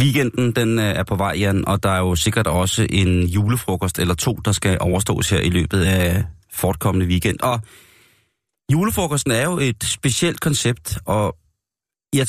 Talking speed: 165 wpm